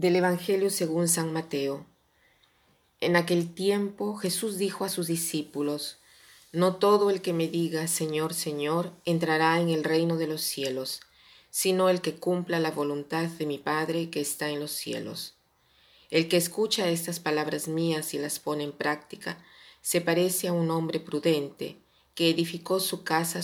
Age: 40-59